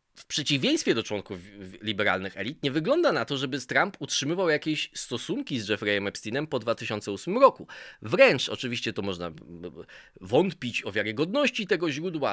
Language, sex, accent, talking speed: Polish, male, native, 145 wpm